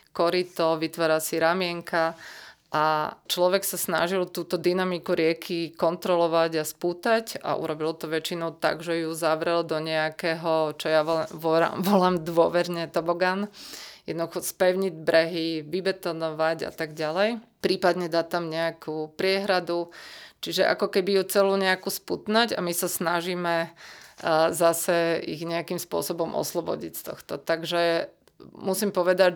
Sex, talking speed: female, 130 wpm